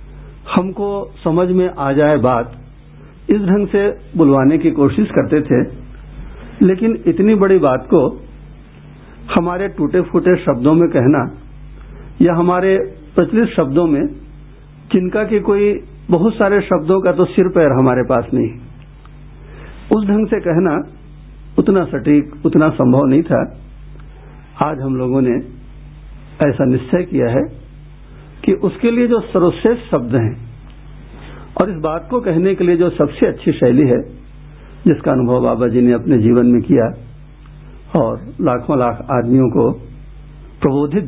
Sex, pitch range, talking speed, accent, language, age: male, 130-175 Hz, 140 wpm, native, Hindi, 60-79